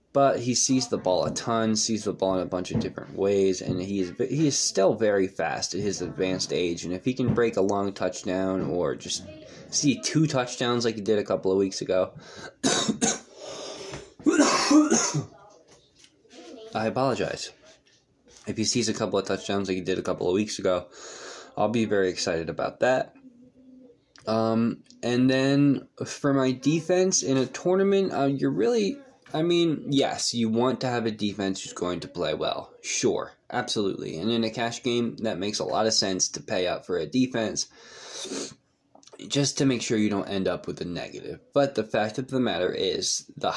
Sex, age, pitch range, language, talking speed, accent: male, 20-39, 95-135 Hz, English, 185 wpm, American